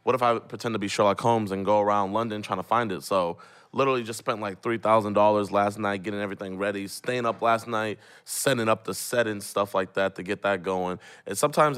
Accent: American